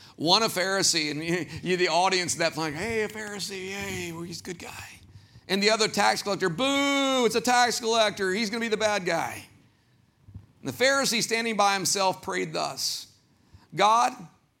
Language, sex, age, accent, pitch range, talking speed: English, male, 50-69, American, 155-210 Hz, 175 wpm